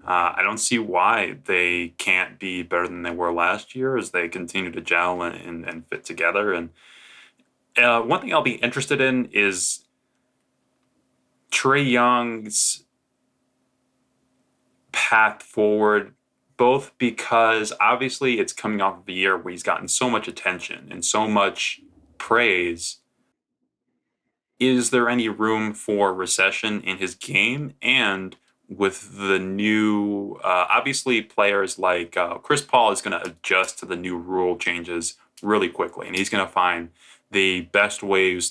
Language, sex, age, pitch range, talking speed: English, male, 20-39, 90-115 Hz, 150 wpm